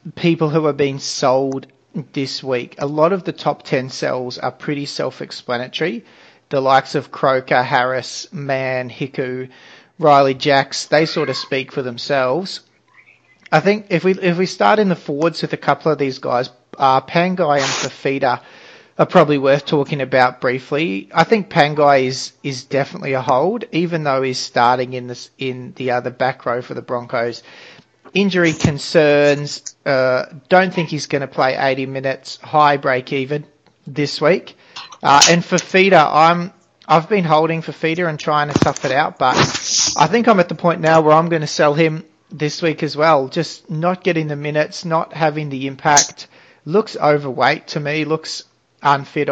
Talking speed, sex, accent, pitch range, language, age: 175 wpm, male, Australian, 135-165 Hz, English, 40-59